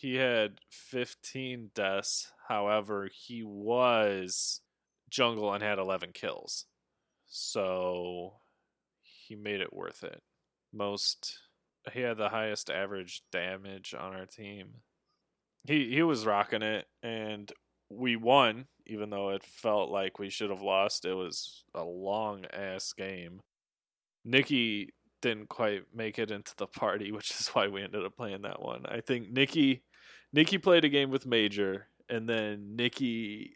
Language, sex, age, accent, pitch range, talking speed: English, male, 20-39, American, 95-115 Hz, 145 wpm